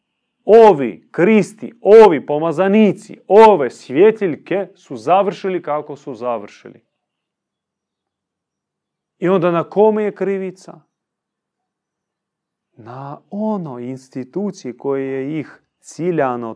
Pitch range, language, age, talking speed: 125-175 Hz, Croatian, 30-49, 85 wpm